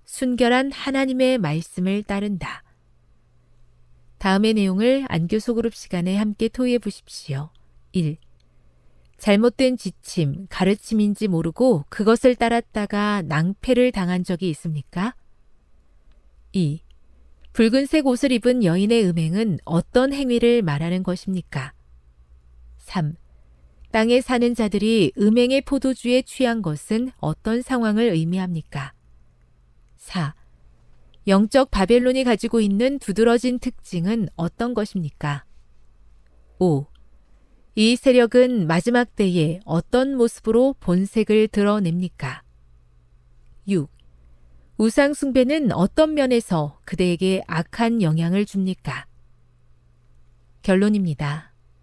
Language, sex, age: Korean, female, 40-59